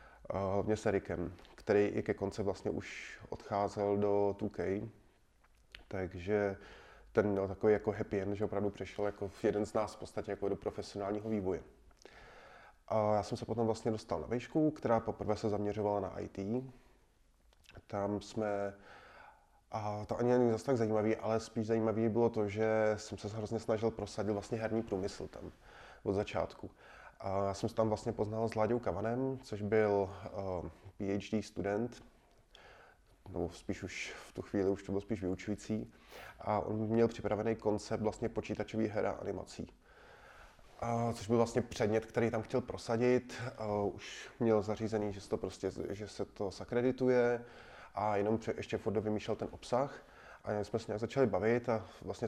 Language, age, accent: Czech, 20-39, native